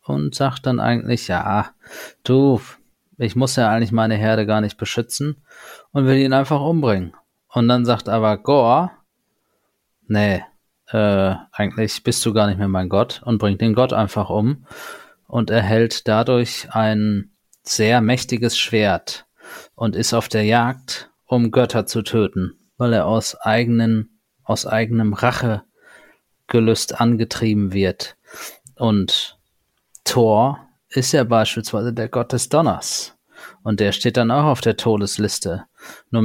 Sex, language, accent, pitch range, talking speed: male, German, German, 110-135 Hz, 140 wpm